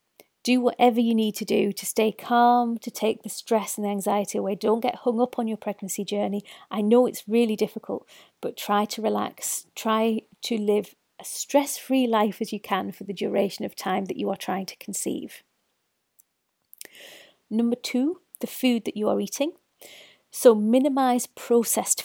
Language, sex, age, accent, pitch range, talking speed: English, female, 40-59, British, 205-245 Hz, 175 wpm